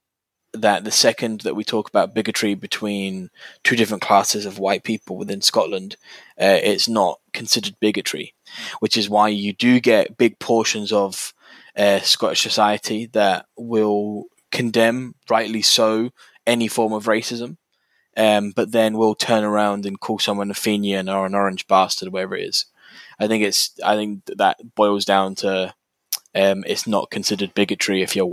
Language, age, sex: English, 10-29, male